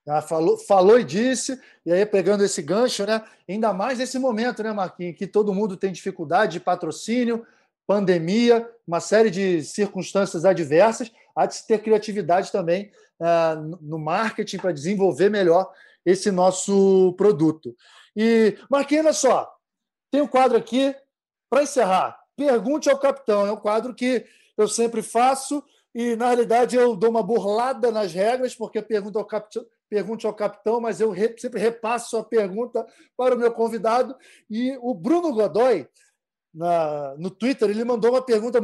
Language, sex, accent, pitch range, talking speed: Portuguese, male, Brazilian, 200-250 Hz, 160 wpm